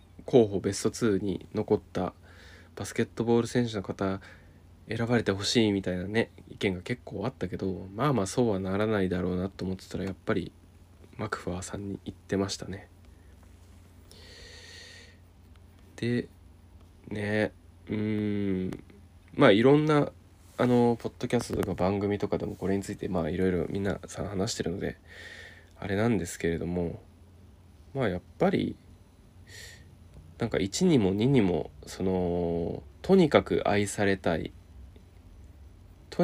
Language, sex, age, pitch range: Japanese, male, 20-39, 90-105 Hz